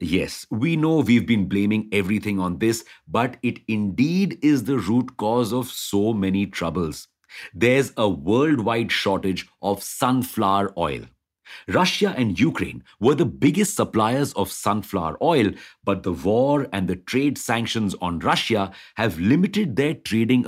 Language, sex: English, male